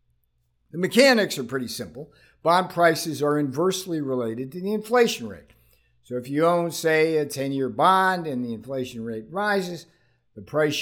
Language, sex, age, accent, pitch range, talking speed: English, male, 50-69, American, 120-170 Hz, 160 wpm